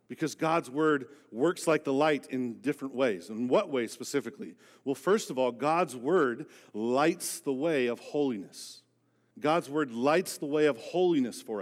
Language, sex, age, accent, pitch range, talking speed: English, male, 40-59, American, 155-210 Hz, 170 wpm